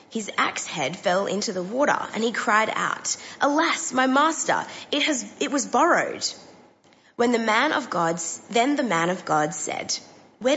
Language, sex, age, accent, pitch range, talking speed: English, female, 20-39, Australian, 190-265 Hz, 175 wpm